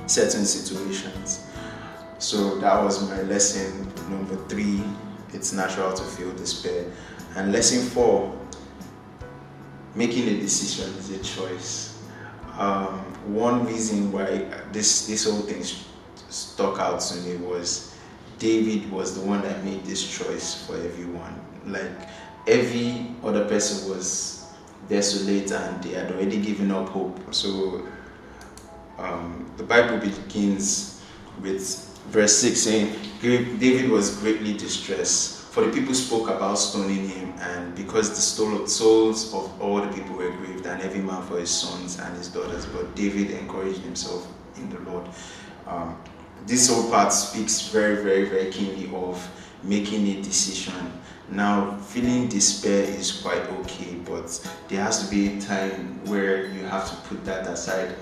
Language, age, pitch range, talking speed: English, 20-39, 95-105 Hz, 145 wpm